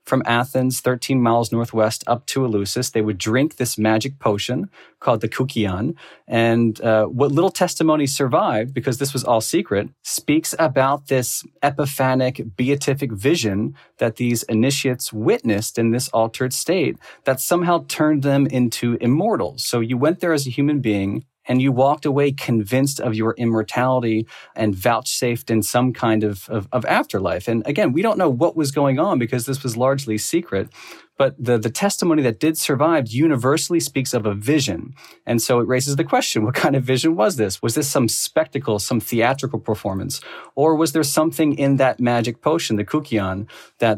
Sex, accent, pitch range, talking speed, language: male, American, 115-140 Hz, 175 wpm, English